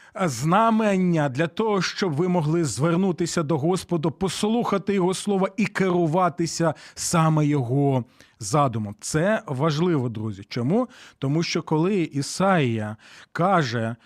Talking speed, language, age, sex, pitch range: 110 wpm, Ukrainian, 40-59, male, 135-190 Hz